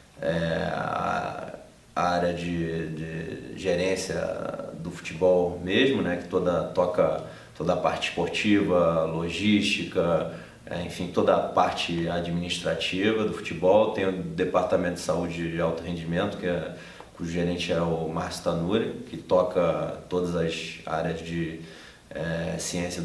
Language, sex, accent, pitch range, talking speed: Portuguese, male, Brazilian, 80-90 Hz, 115 wpm